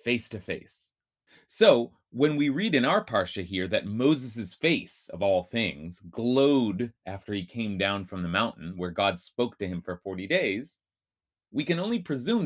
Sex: male